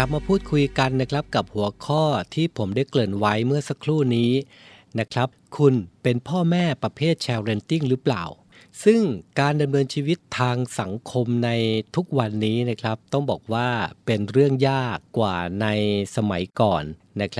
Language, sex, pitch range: Thai, male, 110-140 Hz